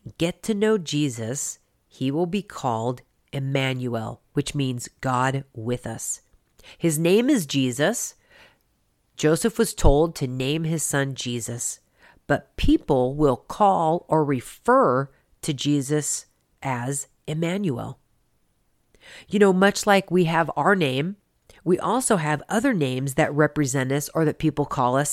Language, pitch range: English, 135-185 Hz